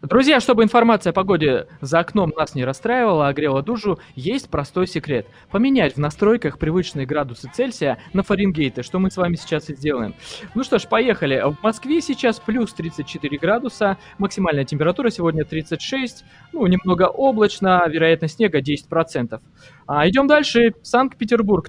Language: Russian